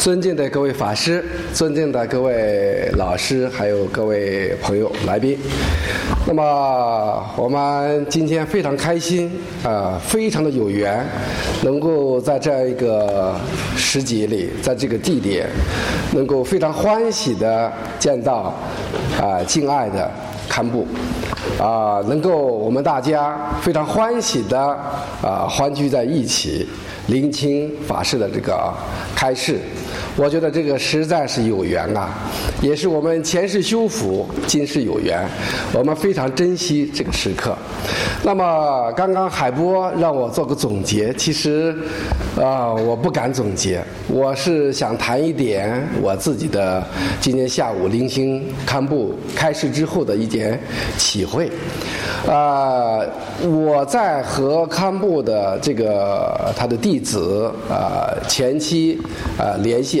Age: 50-69